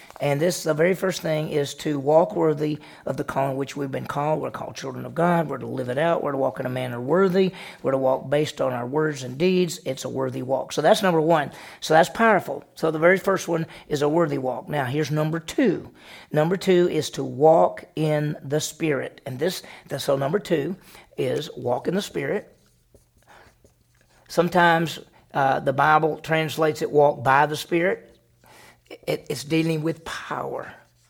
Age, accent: 40-59, American